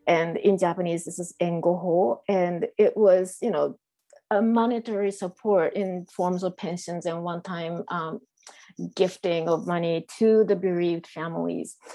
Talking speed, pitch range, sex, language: 145 wpm, 170-210 Hz, female, English